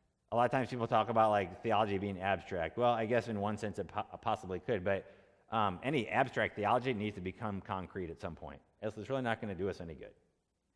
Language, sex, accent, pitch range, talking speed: English, male, American, 90-130 Hz, 235 wpm